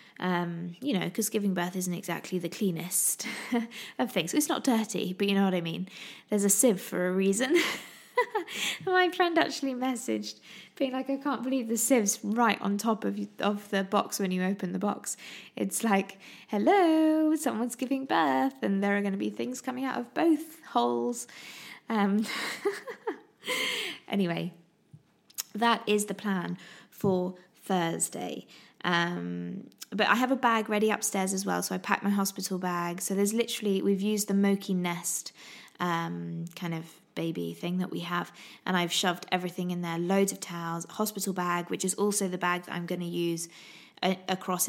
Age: 20-39